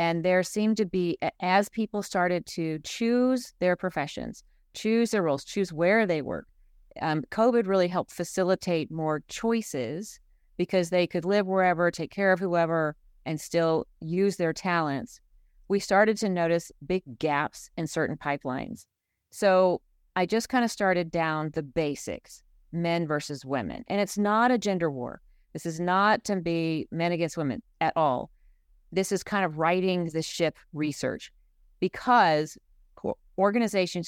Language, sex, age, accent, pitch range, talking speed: English, female, 40-59, American, 160-195 Hz, 155 wpm